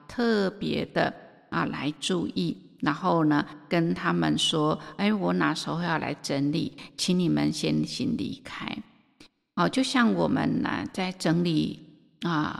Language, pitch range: Chinese, 170-230 Hz